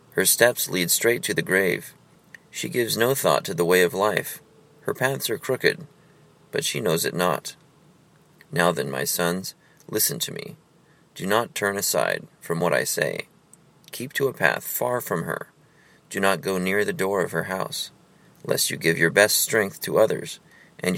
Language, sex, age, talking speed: English, male, 30-49, 185 wpm